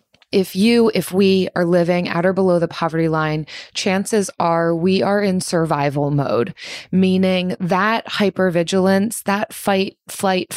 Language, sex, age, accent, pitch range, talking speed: English, female, 20-39, American, 165-195 Hz, 140 wpm